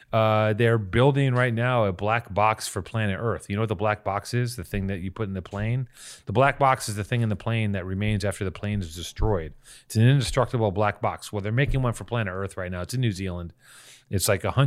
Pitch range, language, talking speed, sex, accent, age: 100-140 Hz, English, 255 wpm, male, American, 30-49